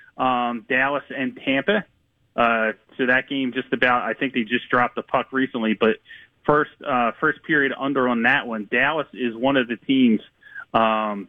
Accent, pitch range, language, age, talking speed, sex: American, 115-140 Hz, English, 30-49, 180 wpm, male